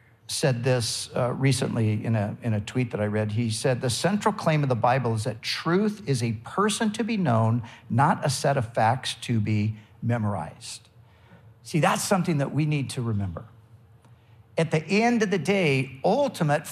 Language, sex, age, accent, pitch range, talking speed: English, male, 50-69, American, 115-155 Hz, 185 wpm